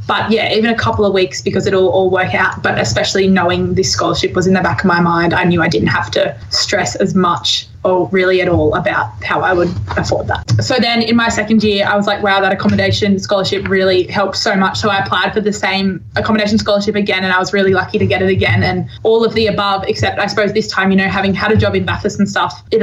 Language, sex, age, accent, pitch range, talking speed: English, female, 20-39, Australian, 190-210 Hz, 260 wpm